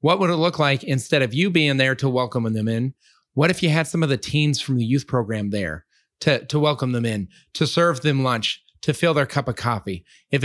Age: 30-49